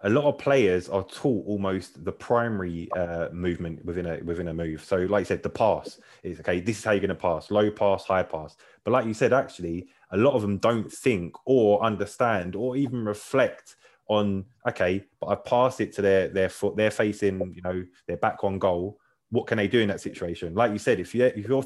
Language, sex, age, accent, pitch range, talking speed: English, male, 20-39, British, 95-115 Hz, 225 wpm